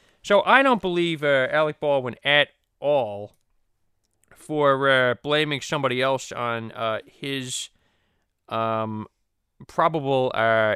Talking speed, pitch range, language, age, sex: 110 wpm, 125-195 Hz, English, 20-39, male